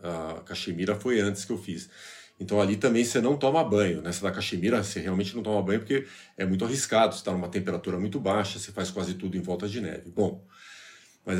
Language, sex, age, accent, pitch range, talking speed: Portuguese, male, 40-59, Brazilian, 90-115 Hz, 215 wpm